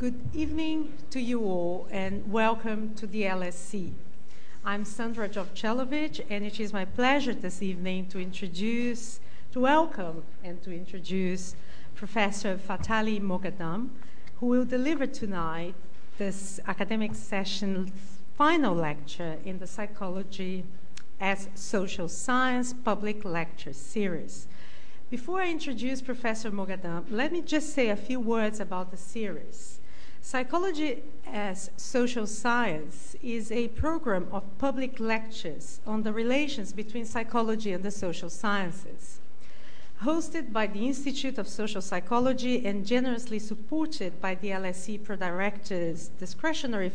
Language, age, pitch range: English, 50-69, 185-245 Hz